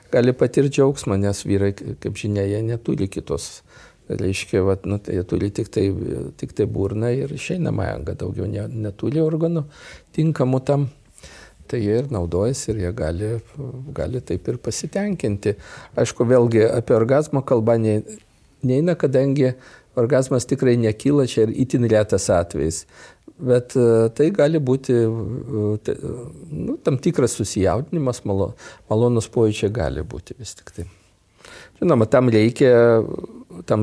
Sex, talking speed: male, 135 wpm